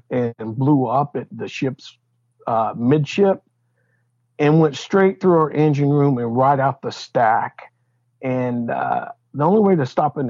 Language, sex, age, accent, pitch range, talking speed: English, male, 50-69, American, 120-165 Hz, 165 wpm